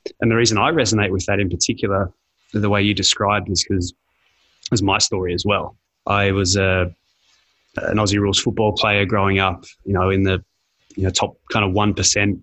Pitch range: 95-105 Hz